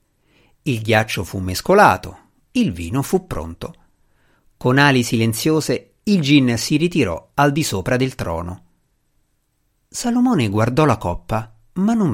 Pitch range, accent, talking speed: 110-155 Hz, native, 130 wpm